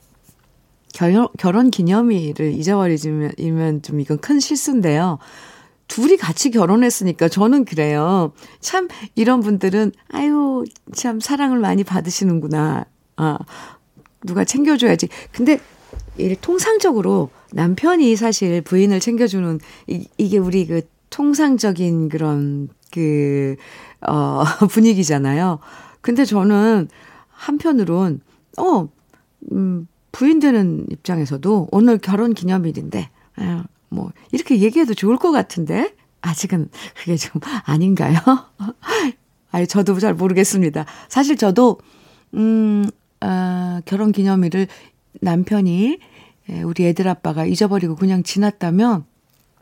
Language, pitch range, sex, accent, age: Korean, 170-245 Hz, female, native, 50-69